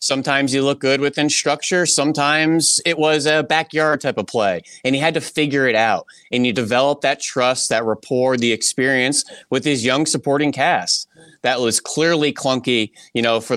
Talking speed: 185 wpm